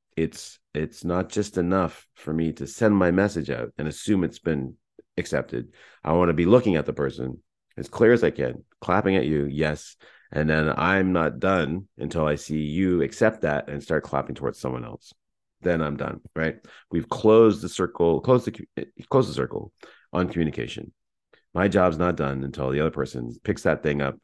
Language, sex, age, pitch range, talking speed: English, male, 30-49, 75-95 Hz, 195 wpm